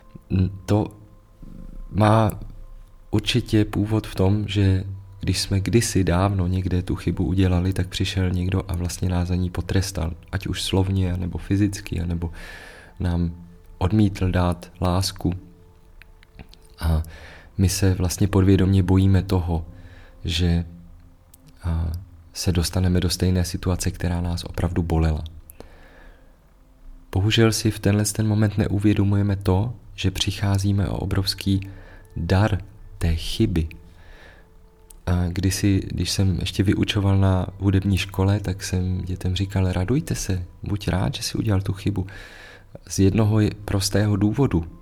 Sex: male